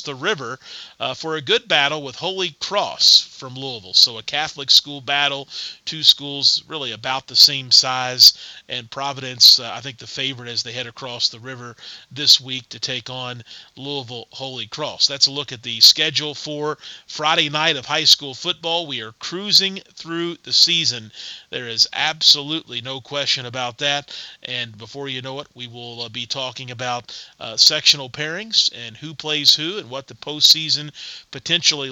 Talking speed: 175 wpm